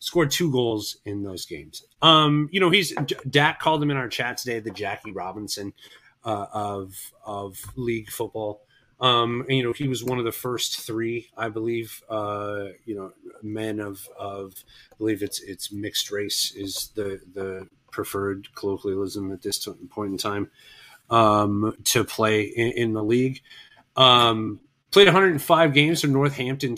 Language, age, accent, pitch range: English, 30-49, American, 100-135 Hz